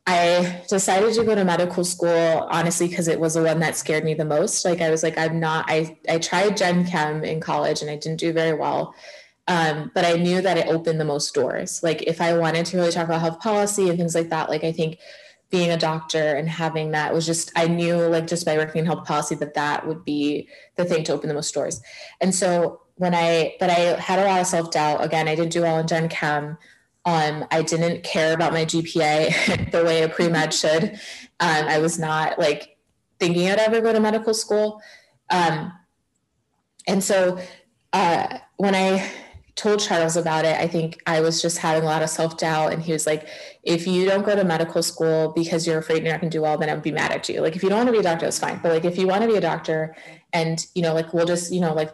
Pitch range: 160-180 Hz